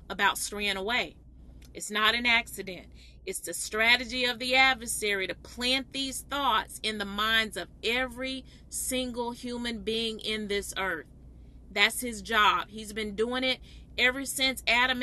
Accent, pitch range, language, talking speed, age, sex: American, 200-255 Hz, English, 150 wpm, 30-49, female